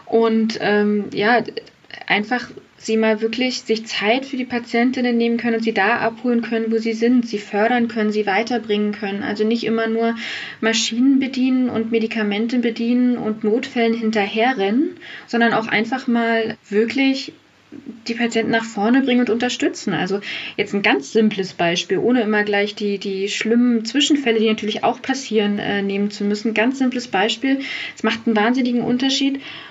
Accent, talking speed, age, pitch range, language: German, 160 wpm, 20-39, 215-245 Hz, German